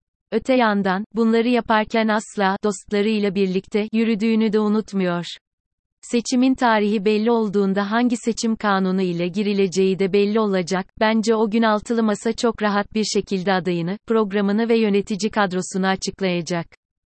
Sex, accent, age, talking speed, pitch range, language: female, native, 30-49, 130 wpm, 190-225 Hz, Turkish